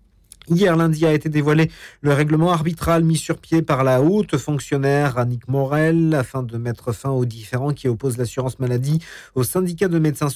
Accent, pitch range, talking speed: French, 120-155 Hz, 180 wpm